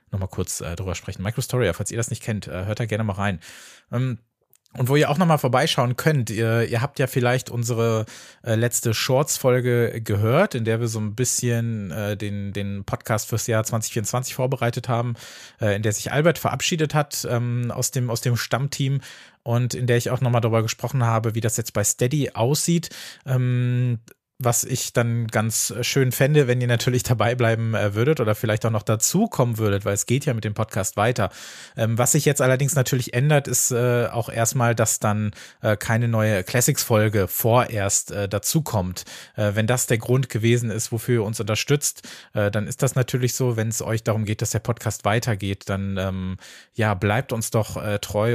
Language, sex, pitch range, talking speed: German, male, 105-125 Hz, 195 wpm